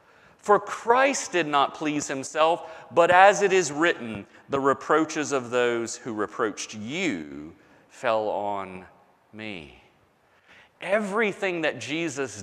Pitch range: 140-195 Hz